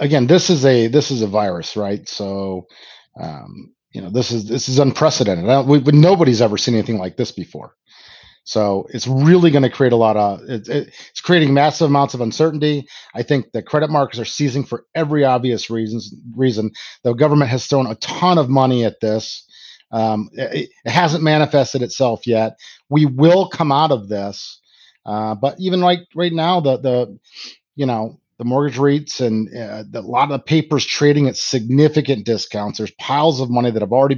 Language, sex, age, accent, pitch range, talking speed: English, male, 40-59, American, 115-145 Hz, 200 wpm